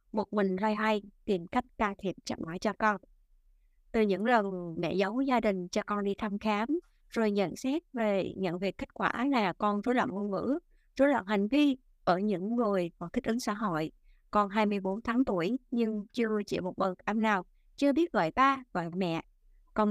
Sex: female